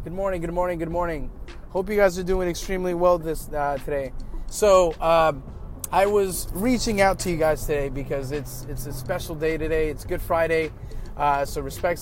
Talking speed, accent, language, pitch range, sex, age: 195 wpm, American, English, 130-165 Hz, male, 30-49